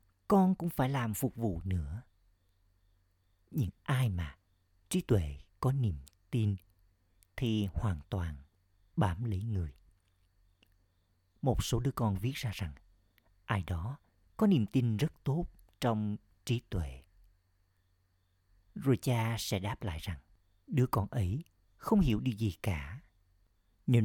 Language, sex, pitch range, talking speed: Vietnamese, male, 90-115 Hz, 130 wpm